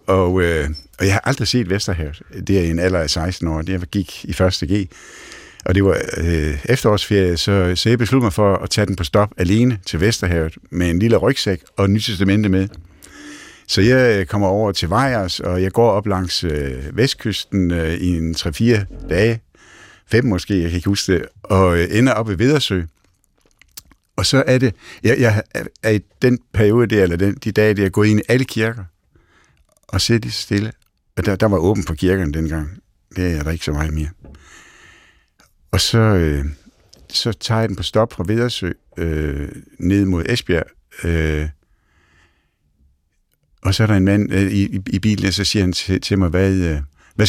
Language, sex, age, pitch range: Danish, male, 60-79, 85-105 Hz